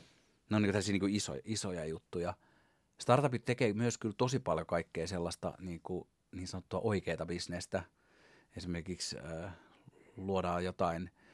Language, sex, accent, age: Finnish, male, native, 30-49